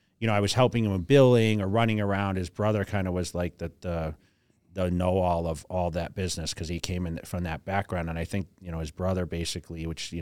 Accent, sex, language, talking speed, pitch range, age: American, male, English, 245 wpm, 90-100 Hz, 30-49